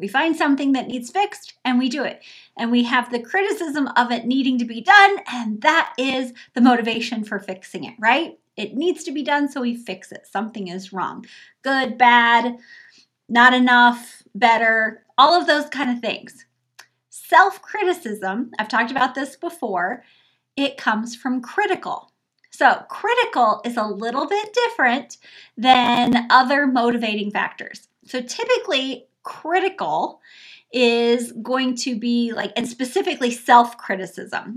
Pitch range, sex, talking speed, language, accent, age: 225-290 Hz, female, 150 wpm, English, American, 30-49